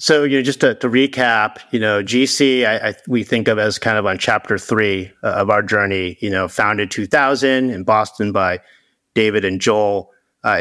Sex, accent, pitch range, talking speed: male, American, 105-130 Hz, 190 wpm